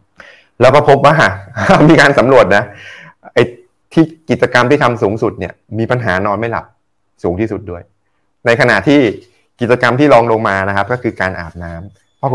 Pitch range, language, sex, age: 95-130 Hz, Thai, male, 20-39